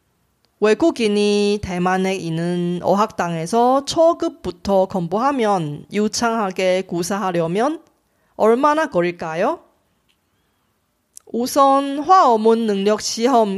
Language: Korean